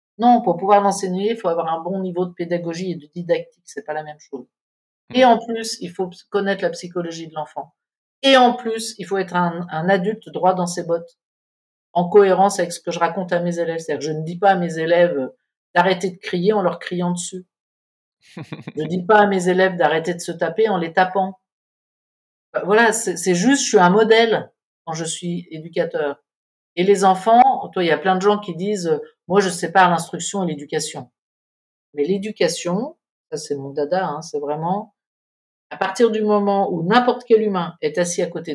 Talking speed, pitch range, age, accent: 205 wpm, 165-200 Hz, 50-69, French